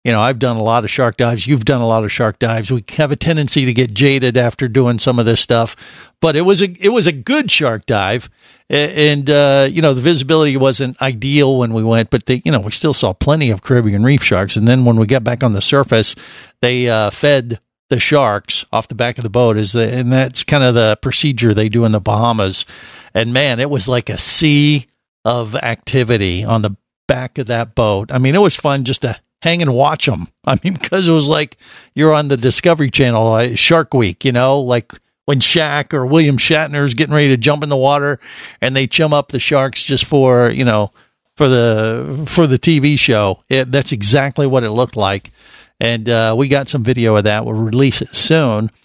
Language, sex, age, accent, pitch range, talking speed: English, male, 50-69, American, 115-145 Hz, 225 wpm